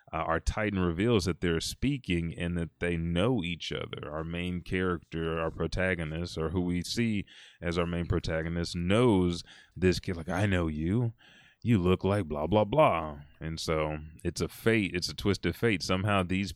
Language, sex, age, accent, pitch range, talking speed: English, male, 30-49, American, 80-95 Hz, 185 wpm